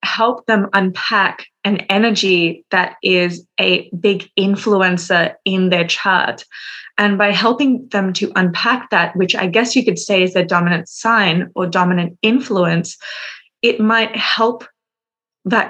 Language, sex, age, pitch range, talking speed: English, female, 20-39, 185-215 Hz, 140 wpm